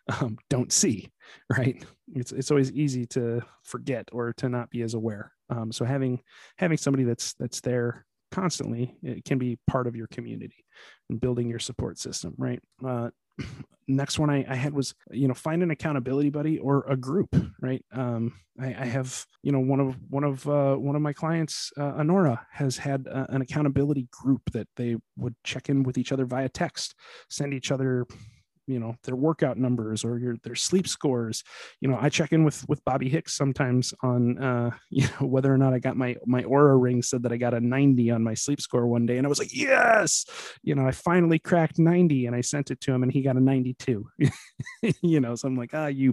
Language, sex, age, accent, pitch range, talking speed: English, male, 30-49, American, 120-145 Hz, 215 wpm